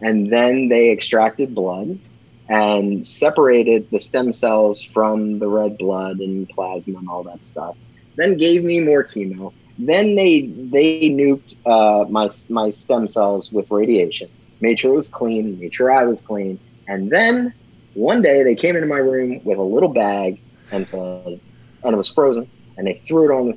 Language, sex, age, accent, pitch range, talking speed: English, male, 30-49, American, 105-140 Hz, 180 wpm